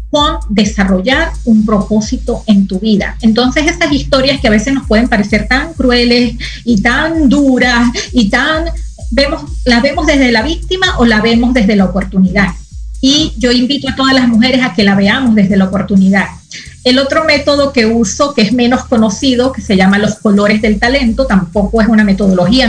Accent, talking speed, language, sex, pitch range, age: American, 180 wpm, Spanish, female, 210-265 Hz, 40-59